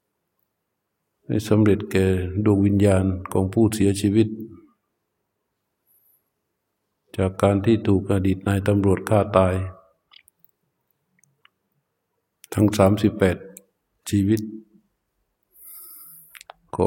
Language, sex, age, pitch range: Thai, male, 60-79, 95-110 Hz